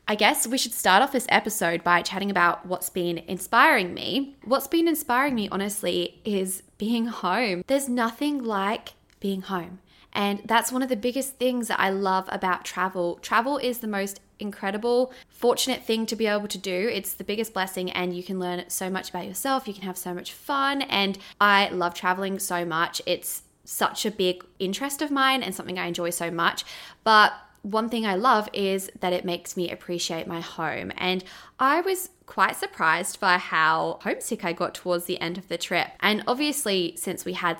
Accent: Australian